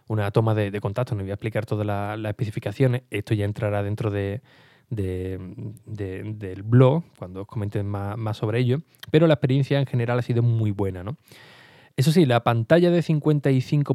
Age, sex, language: 20-39, male, Spanish